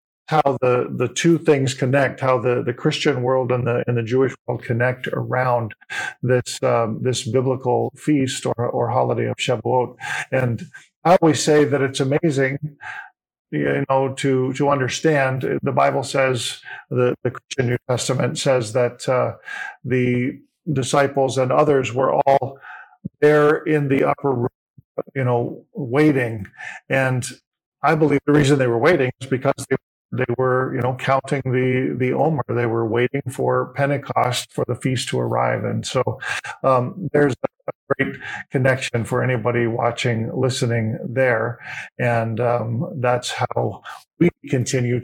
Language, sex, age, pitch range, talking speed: English, male, 50-69, 125-140 Hz, 155 wpm